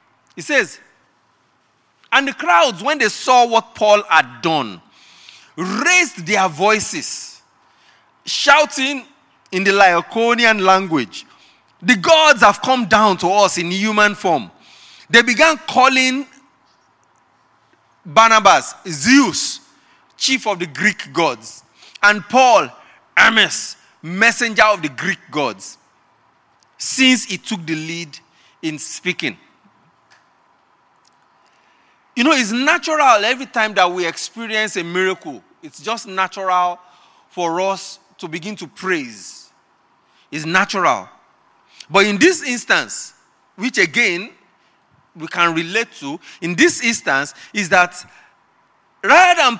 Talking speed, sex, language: 115 wpm, male, English